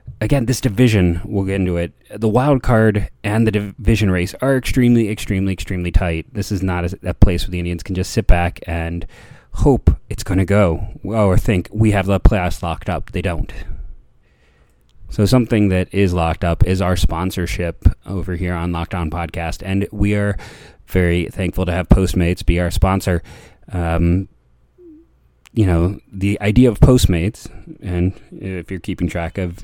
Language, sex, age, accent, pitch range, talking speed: English, male, 30-49, American, 85-105 Hz, 175 wpm